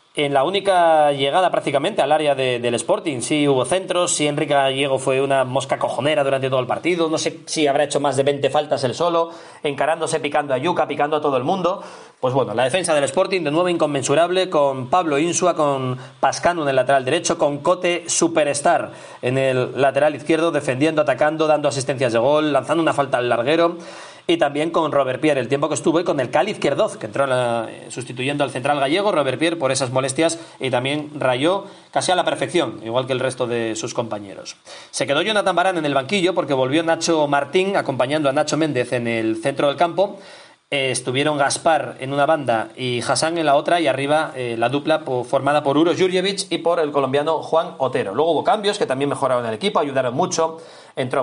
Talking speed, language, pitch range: 210 wpm, Spanish, 135-165 Hz